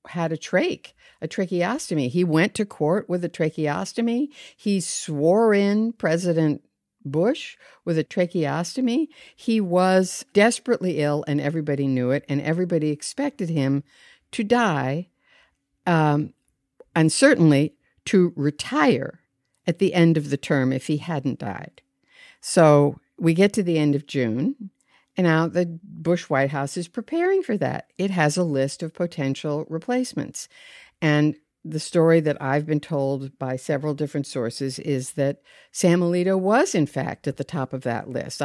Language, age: English, 60-79